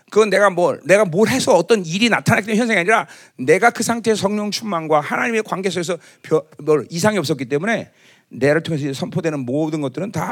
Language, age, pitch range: Korean, 40-59, 145-235 Hz